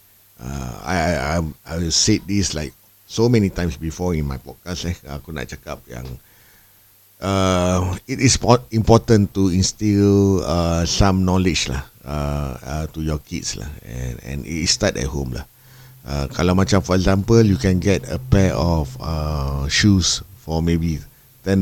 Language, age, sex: Malay, 50-69, male